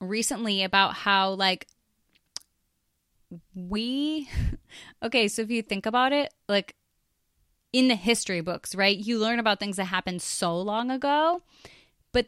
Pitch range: 185-235 Hz